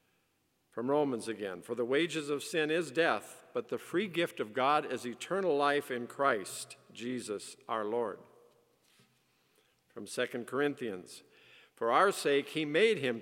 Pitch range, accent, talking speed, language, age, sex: 120-145 Hz, American, 150 wpm, English, 50-69, male